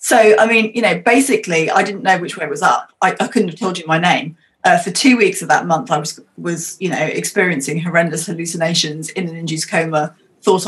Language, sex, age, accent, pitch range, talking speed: English, female, 30-49, British, 160-205 Hz, 235 wpm